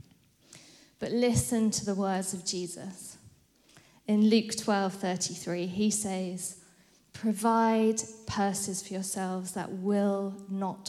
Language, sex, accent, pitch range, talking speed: English, female, British, 185-220 Hz, 110 wpm